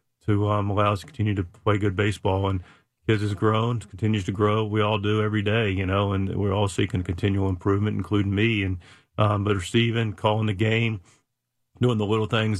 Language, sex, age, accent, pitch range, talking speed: English, male, 40-59, American, 100-110 Hz, 205 wpm